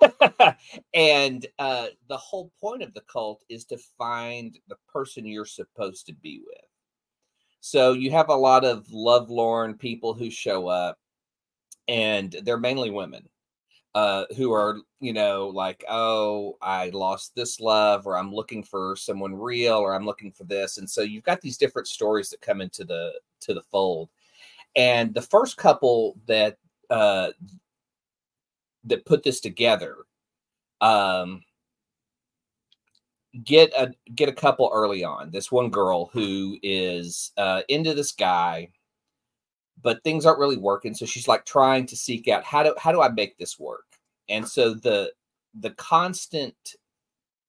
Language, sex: English, male